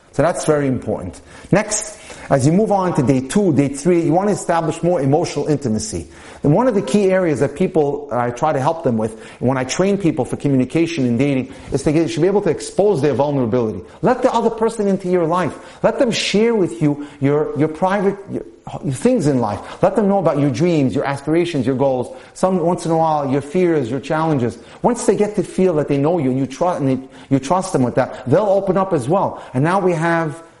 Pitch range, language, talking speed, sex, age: 125-165 Hz, English, 225 wpm, male, 40-59